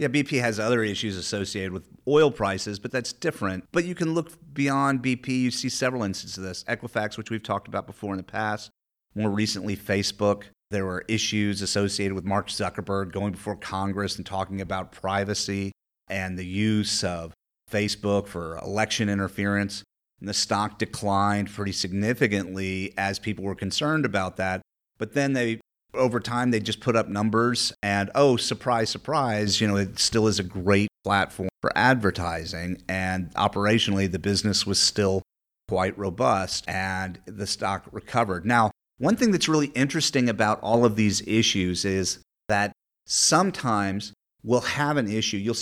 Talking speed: 165 wpm